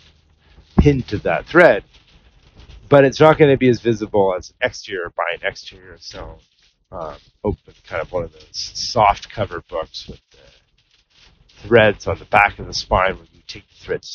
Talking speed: 180 wpm